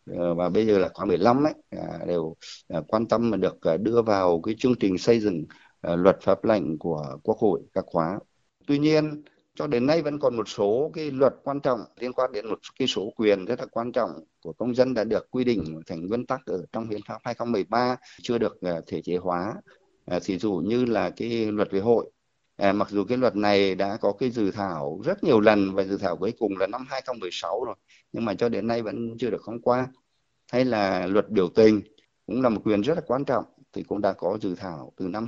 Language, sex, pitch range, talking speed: Vietnamese, male, 95-120 Hz, 225 wpm